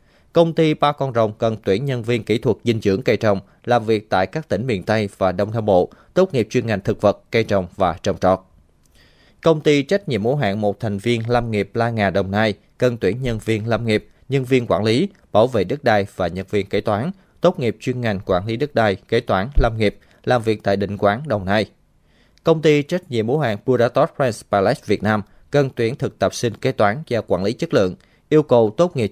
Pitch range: 100-130 Hz